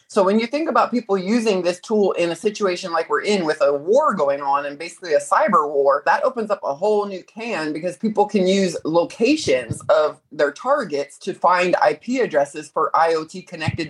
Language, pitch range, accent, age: English, 165-210 Hz, American, 30-49